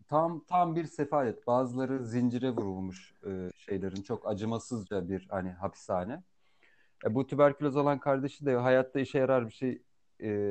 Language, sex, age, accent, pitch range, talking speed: Turkish, male, 40-59, native, 100-130 Hz, 150 wpm